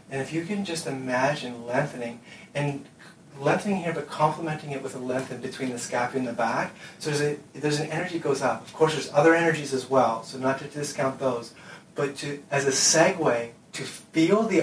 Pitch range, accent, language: 130-160 Hz, American, English